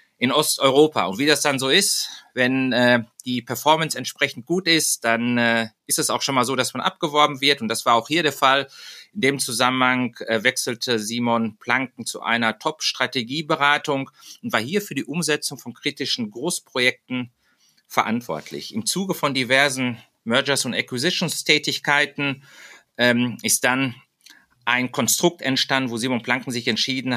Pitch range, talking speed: 115-145 Hz, 155 wpm